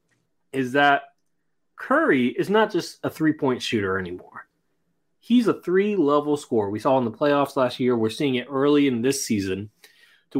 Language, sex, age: English, male, 30-49